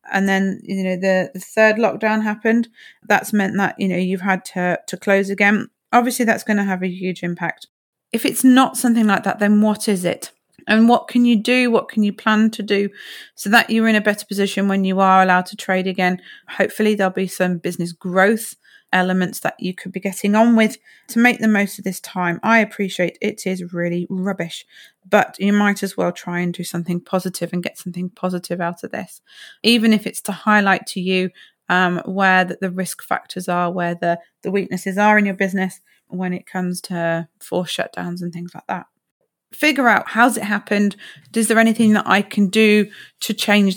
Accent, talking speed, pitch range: British, 210 wpm, 185-220 Hz